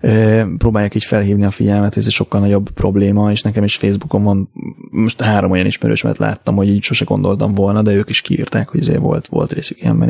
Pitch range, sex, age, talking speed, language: 100-110 Hz, male, 20-39, 215 wpm, Hungarian